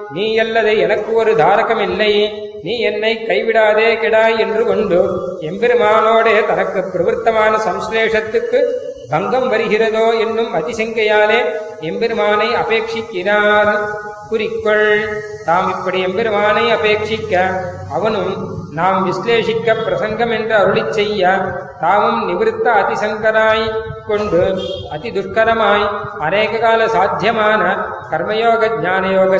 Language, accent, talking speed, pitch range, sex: Tamil, native, 75 wpm, 205-225 Hz, male